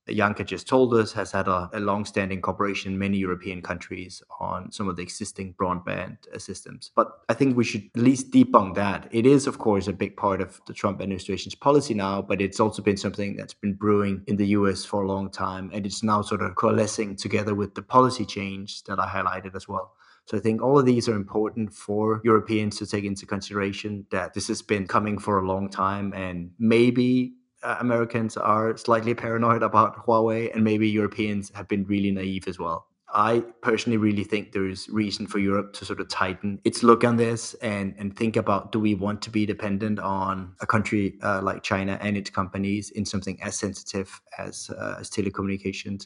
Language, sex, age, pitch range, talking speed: English, male, 20-39, 95-110 Hz, 205 wpm